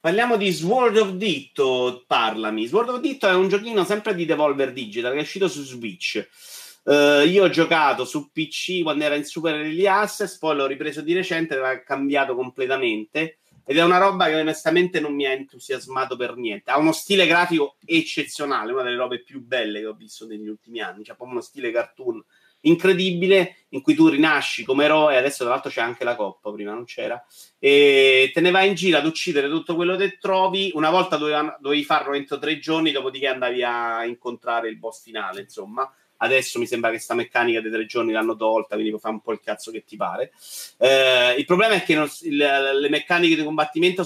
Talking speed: 200 wpm